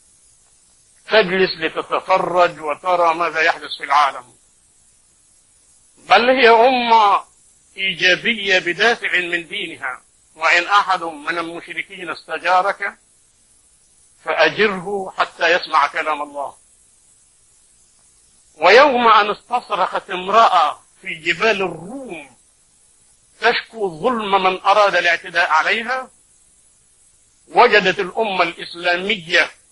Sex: male